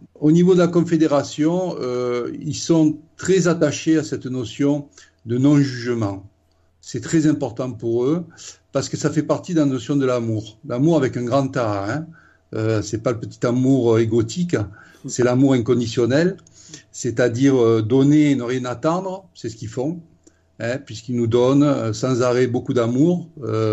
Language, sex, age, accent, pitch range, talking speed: French, male, 50-69, French, 115-150 Hz, 165 wpm